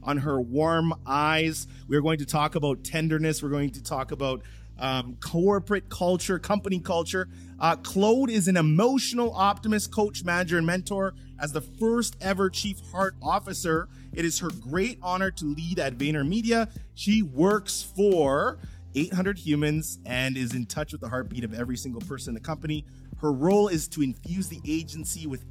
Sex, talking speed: male, 170 wpm